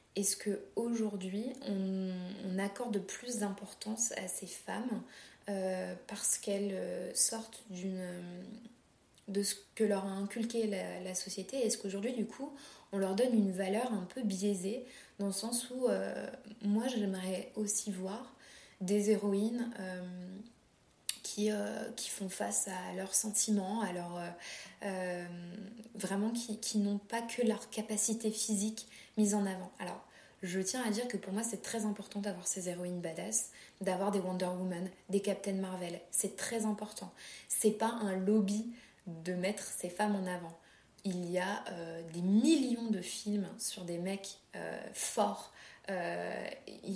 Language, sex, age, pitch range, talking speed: French, female, 20-39, 190-225 Hz, 150 wpm